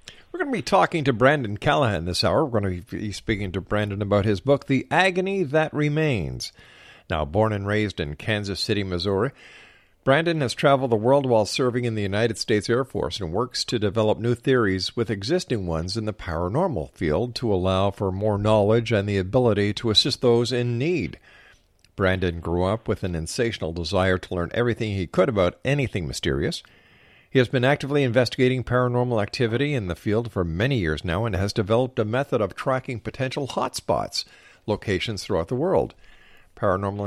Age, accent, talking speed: 50-69, American, 185 wpm